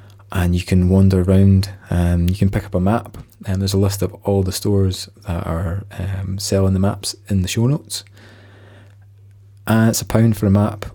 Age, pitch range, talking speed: 20-39, 95-105 Hz, 205 wpm